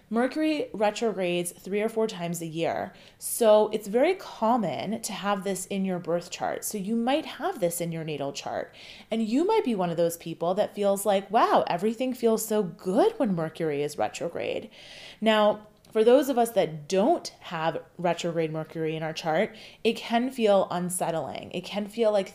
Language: English